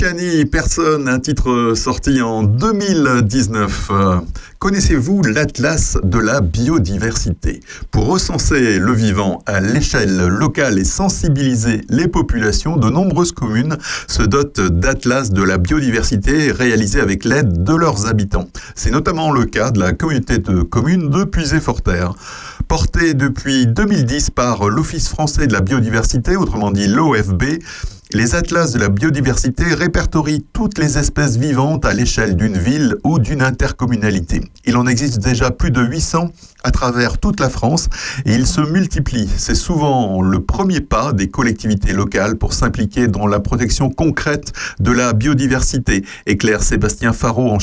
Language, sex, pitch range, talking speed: French, male, 105-145 Hz, 145 wpm